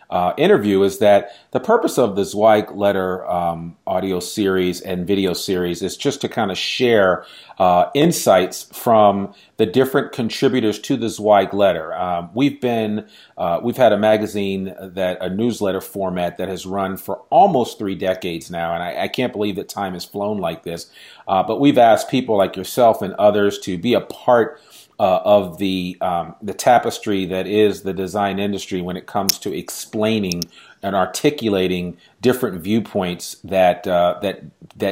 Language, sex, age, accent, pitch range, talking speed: English, male, 40-59, American, 90-105 Hz, 170 wpm